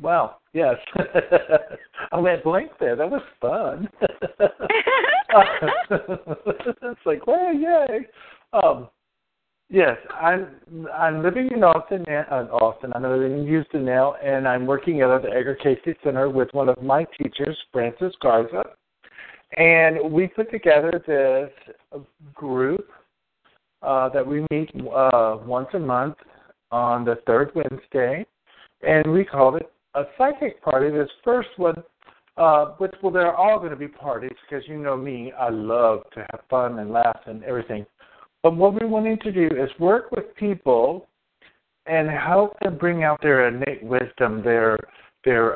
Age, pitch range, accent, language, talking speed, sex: 50-69, 125-170 Hz, American, English, 150 wpm, male